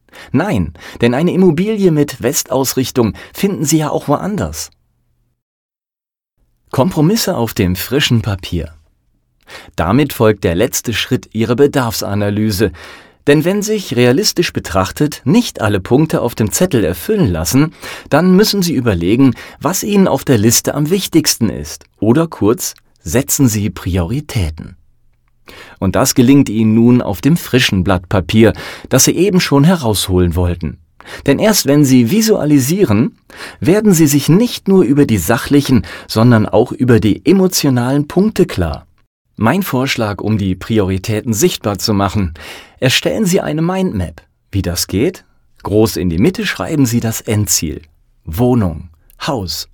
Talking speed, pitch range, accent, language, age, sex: 140 wpm, 100-150 Hz, German, German, 30-49, male